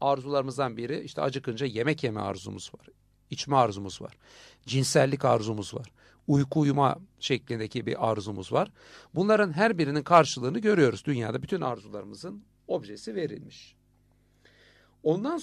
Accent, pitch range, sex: native, 115-165 Hz, male